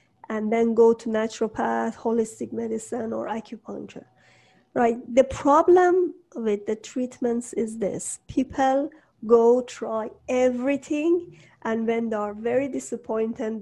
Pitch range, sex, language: 220-245 Hz, female, English